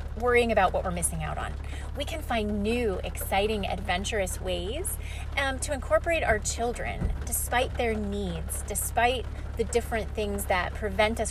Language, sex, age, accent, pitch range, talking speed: English, female, 30-49, American, 190-265 Hz, 155 wpm